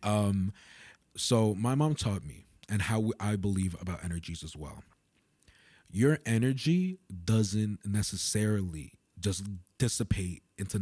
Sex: male